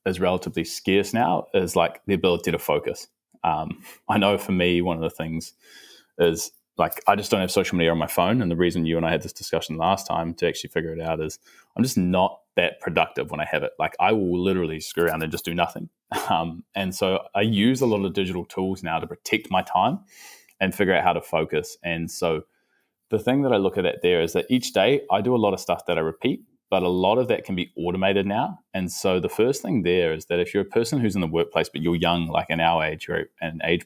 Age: 20-39